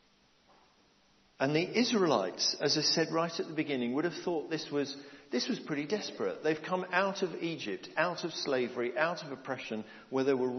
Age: 50-69